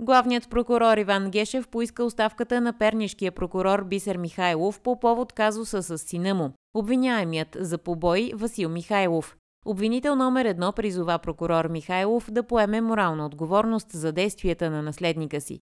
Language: Bulgarian